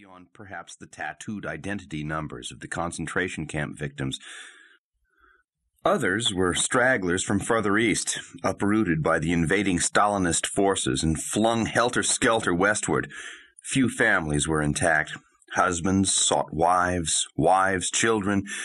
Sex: male